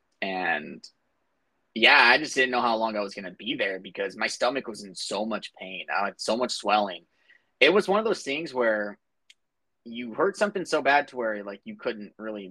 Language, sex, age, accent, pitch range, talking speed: English, male, 20-39, American, 100-120 Hz, 215 wpm